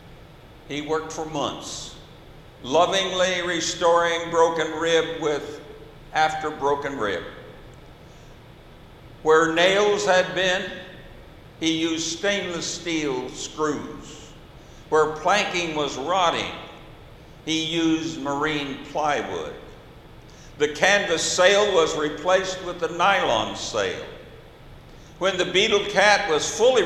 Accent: American